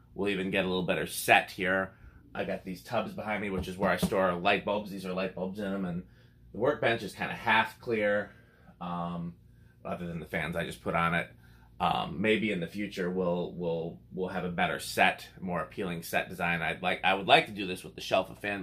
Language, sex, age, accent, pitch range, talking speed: English, male, 20-39, American, 85-110 Hz, 240 wpm